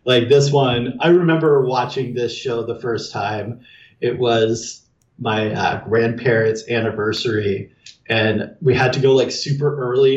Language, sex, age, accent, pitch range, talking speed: English, male, 30-49, American, 120-155 Hz, 150 wpm